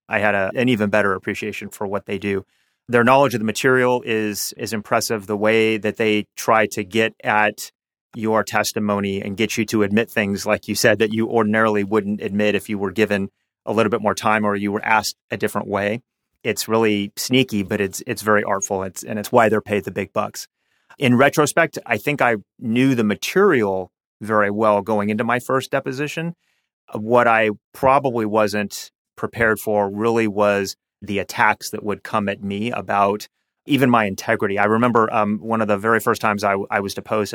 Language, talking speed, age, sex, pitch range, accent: English, 200 wpm, 30-49, male, 105-120 Hz, American